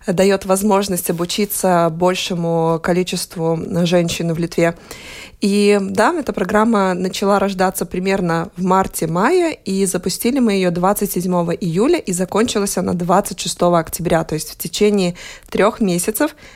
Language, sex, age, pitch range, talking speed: Russian, female, 20-39, 175-200 Hz, 125 wpm